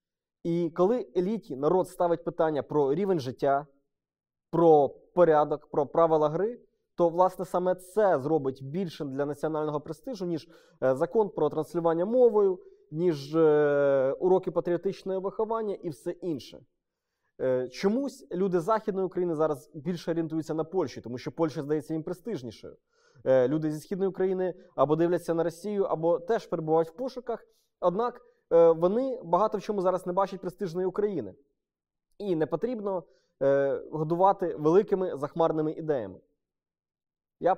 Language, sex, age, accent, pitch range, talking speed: Ukrainian, male, 20-39, native, 150-185 Hz, 130 wpm